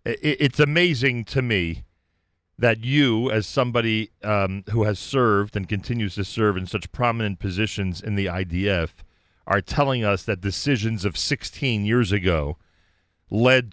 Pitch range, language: 100-145 Hz, English